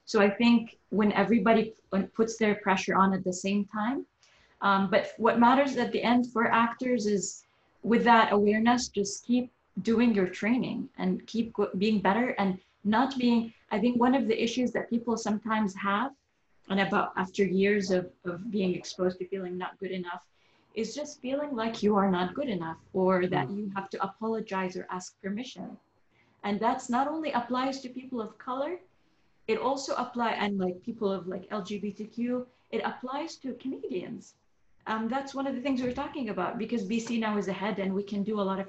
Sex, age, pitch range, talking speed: female, 20-39, 195-240 Hz, 190 wpm